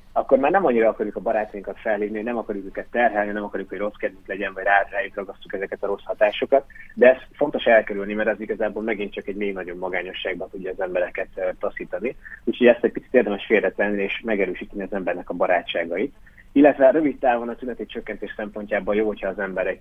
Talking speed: 205 wpm